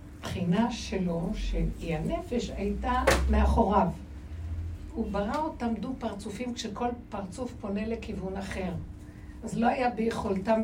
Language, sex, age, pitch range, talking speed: Hebrew, female, 60-79, 170-220 Hz, 115 wpm